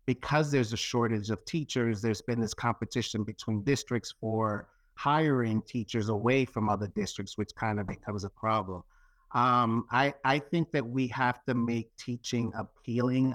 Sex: male